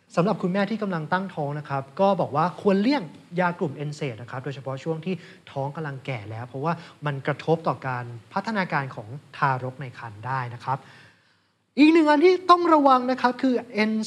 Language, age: Thai, 30-49